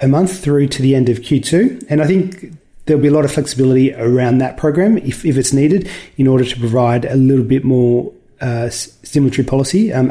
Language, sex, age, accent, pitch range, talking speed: English, male, 30-49, Australian, 125-150 Hz, 210 wpm